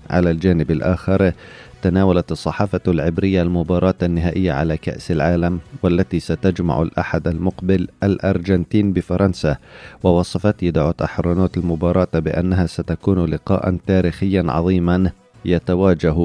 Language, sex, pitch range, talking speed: Arabic, male, 85-95 Hz, 100 wpm